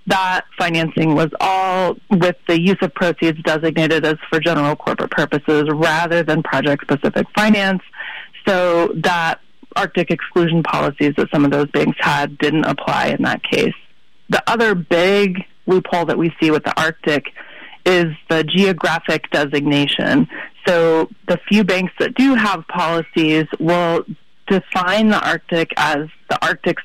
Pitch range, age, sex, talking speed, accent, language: 155-185 Hz, 30-49, female, 145 wpm, American, English